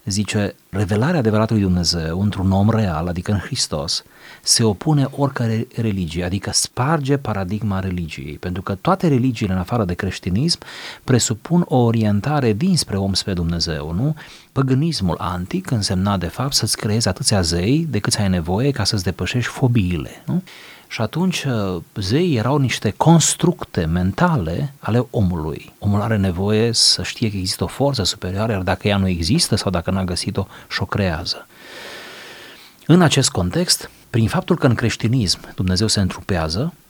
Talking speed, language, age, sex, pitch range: 150 wpm, Romanian, 40-59, male, 95-130 Hz